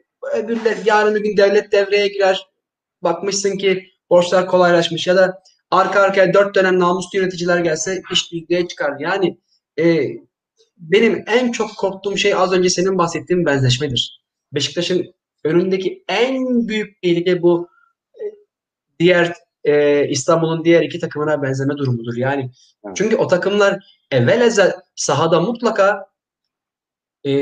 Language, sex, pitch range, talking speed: Turkish, male, 150-195 Hz, 125 wpm